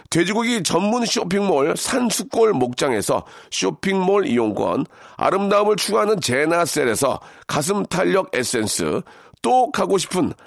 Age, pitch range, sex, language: 40-59, 180-230 Hz, male, Korean